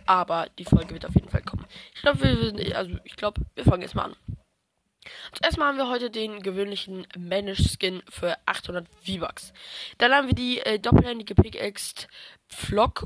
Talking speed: 175 wpm